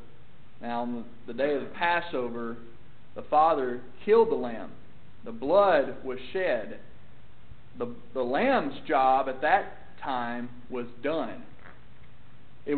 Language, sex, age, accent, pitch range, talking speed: English, male, 40-59, American, 120-160 Hz, 120 wpm